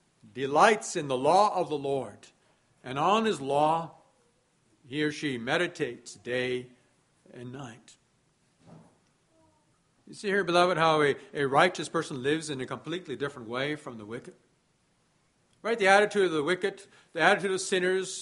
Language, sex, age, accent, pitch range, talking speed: English, male, 60-79, American, 140-195 Hz, 150 wpm